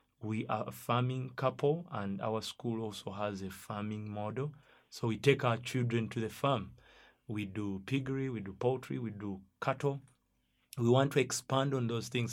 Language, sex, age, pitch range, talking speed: English, male, 30-49, 105-125 Hz, 180 wpm